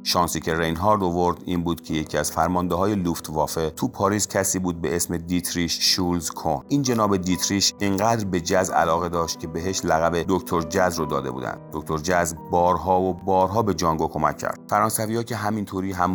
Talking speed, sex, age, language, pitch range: 180 wpm, male, 40-59, Persian, 80-95 Hz